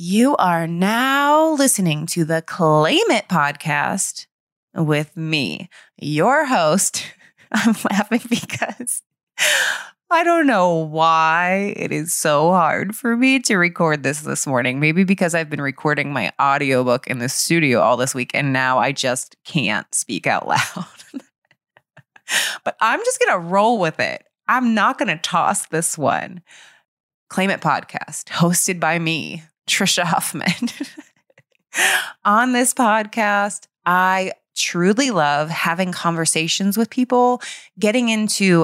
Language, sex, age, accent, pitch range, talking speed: English, female, 20-39, American, 155-225 Hz, 135 wpm